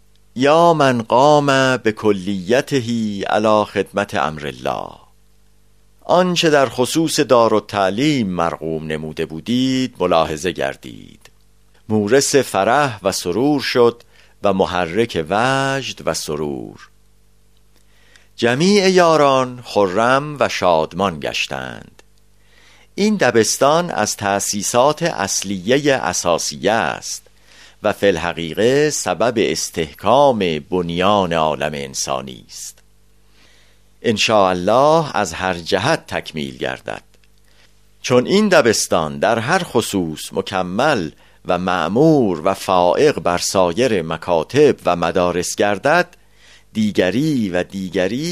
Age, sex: 50-69, male